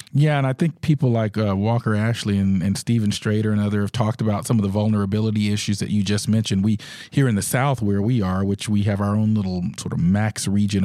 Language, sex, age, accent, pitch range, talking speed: English, male, 40-59, American, 100-115 Hz, 250 wpm